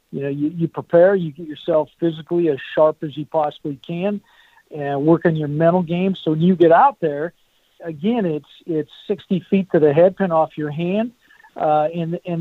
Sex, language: male, English